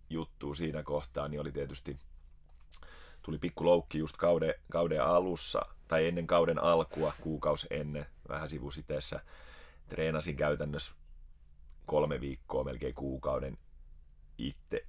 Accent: native